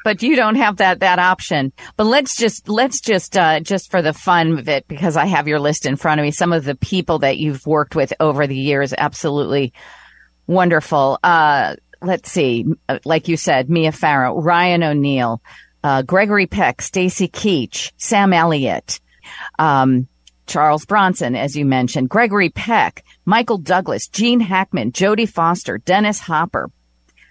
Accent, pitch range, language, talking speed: American, 155-205 Hz, English, 160 wpm